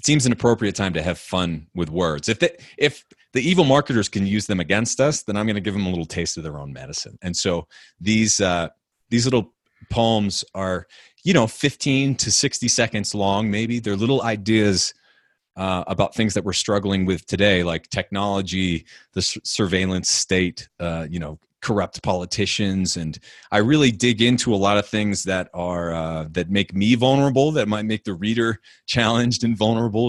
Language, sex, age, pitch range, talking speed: English, male, 30-49, 90-120 Hz, 185 wpm